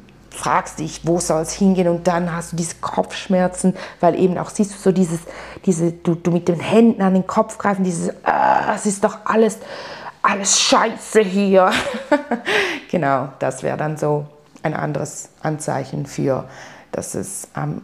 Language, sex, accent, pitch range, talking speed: German, female, German, 150-185 Hz, 170 wpm